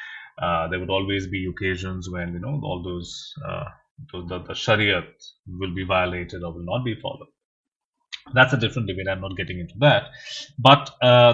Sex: male